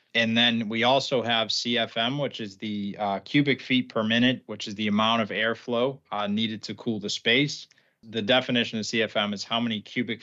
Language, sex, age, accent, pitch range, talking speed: English, male, 20-39, American, 110-125 Hz, 200 wpm